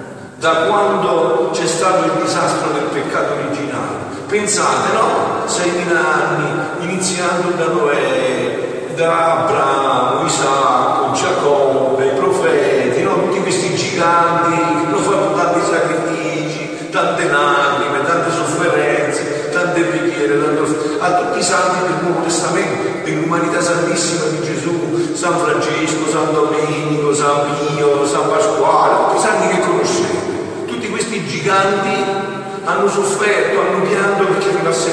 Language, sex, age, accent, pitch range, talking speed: Italian, male, 50-69, native, 165-215 Hz, 110 wpm